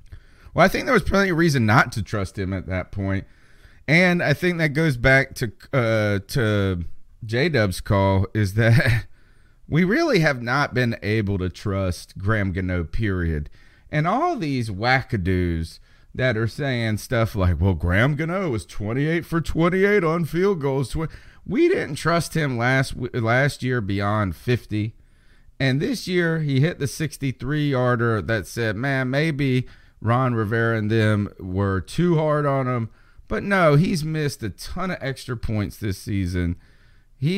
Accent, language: American, English